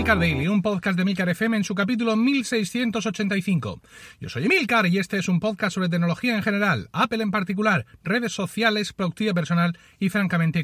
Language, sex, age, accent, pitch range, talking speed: Spanish, male, 30-49, Spanish, 155-205 Hz, 180 wpm